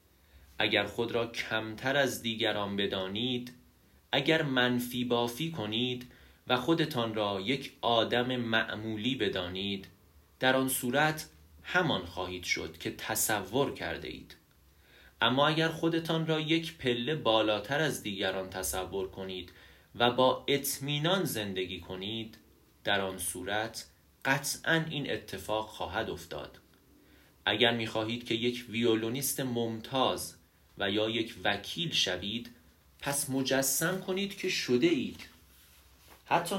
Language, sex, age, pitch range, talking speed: Persian, male, 30-49, 95-135 Hz, 115 wpm